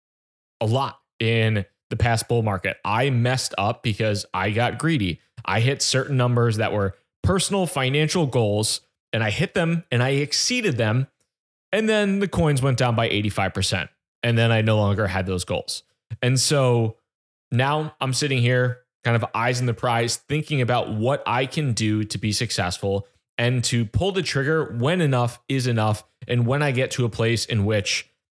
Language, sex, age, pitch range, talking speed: English, male, 20-39, 115-145 Hz, 180 wpm